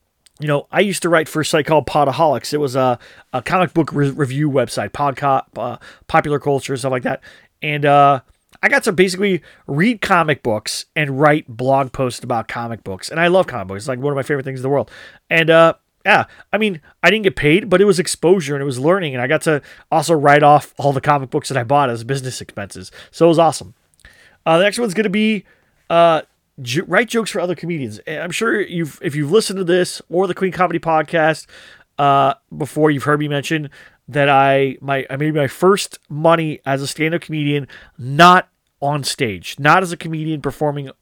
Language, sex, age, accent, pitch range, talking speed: English, male, 30-49, American, 135-165 Hz, 220 wpm